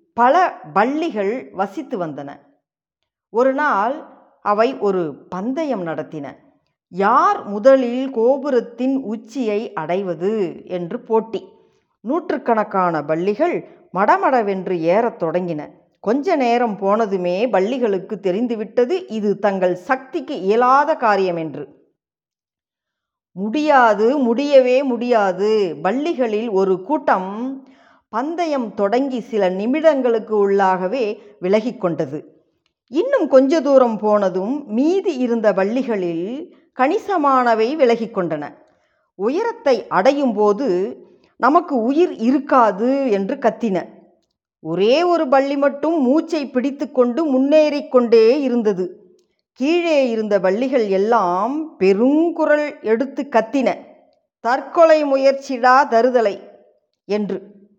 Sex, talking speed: female, 85 wpm